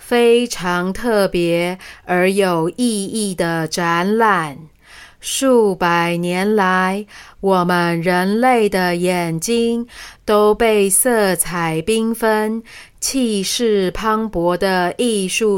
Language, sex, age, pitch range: Chinese, female, 30-49, 180-215 Hz